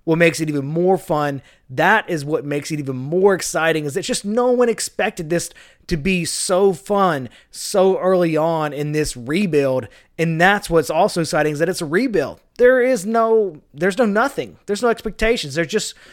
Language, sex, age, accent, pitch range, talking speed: English, male, 20-39, American, 145-180 Hz, 195 wpm